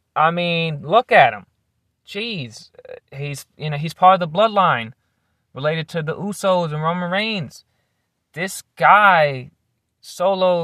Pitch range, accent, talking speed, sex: 130-170 Hz, American, 125 wpm, male